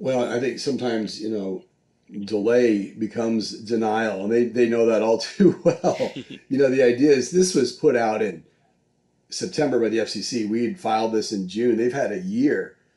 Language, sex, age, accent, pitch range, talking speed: English, male, 40-59, American, 105-125 Hz, 190 wpm